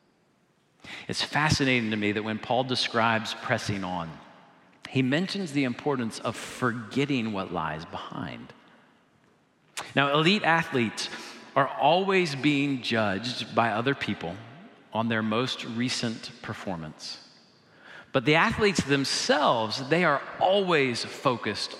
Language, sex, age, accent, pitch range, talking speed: English, male, 40-59, American, 110-150 Hz, 115 wpm